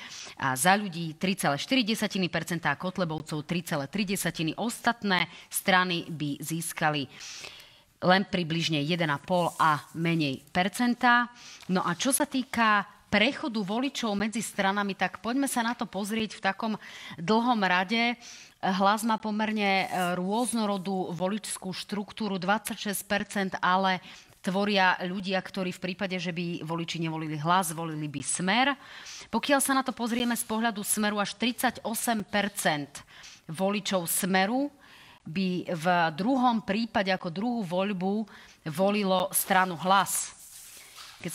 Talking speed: 115 wpm